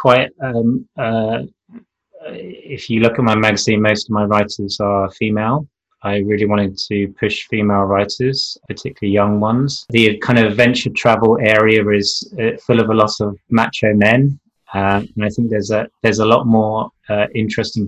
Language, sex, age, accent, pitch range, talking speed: English, male, 20-39, British, 105-115 Hz, 175 wpm